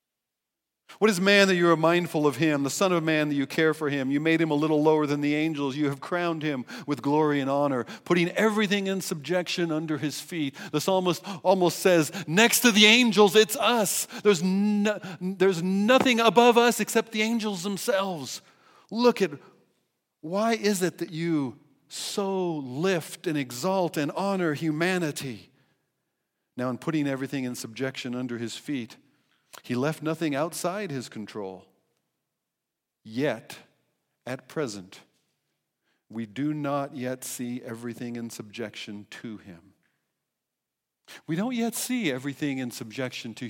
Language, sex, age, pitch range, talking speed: English, male, 50-69, 125-190 Hz, 155 wpm